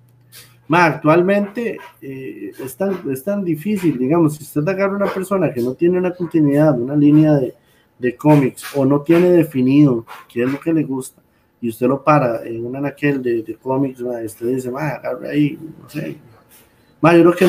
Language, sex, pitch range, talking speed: Spanish, male, 130-170 Hz, 190 wpm